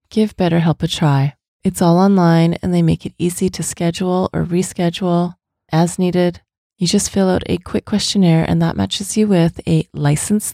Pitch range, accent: 155-190 Hz, American